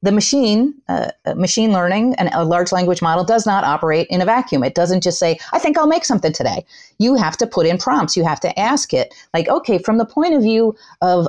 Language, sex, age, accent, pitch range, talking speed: English, female, 30-49, American, 165-220 Hz, 240 wpm